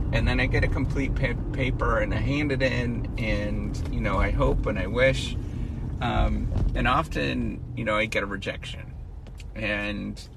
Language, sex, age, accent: English, male, 30-49, American